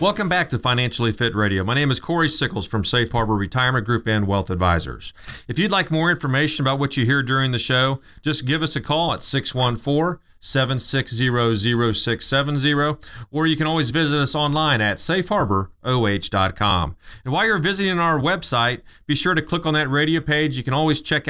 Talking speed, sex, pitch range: 185 wpm, male, 120-155 Hz